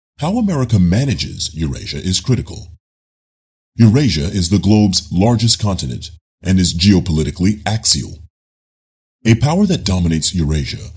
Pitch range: 80-110 Hz